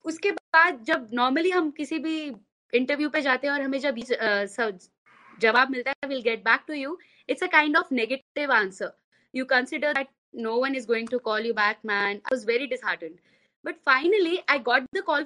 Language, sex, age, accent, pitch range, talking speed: Hindi, female, 20-39, native, 250-340 Hz, 90 wpm